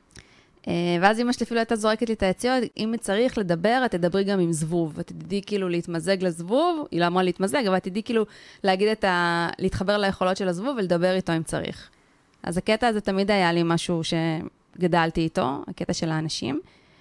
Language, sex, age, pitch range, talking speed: Hebrew, female, 20-39, 165-200 Hz, 180 wpm